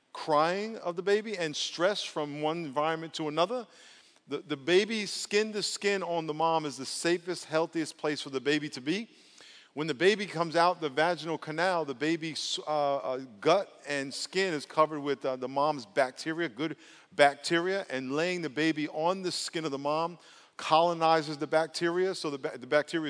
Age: 50-69